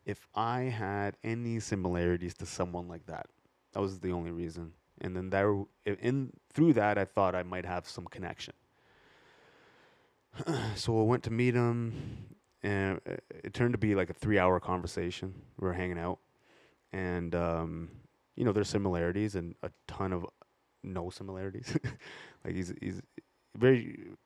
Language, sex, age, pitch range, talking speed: English, male, 20-39, 90-105 Hz, 160 wpm